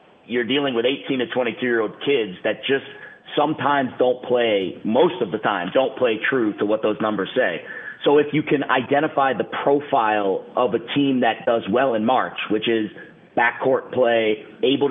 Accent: American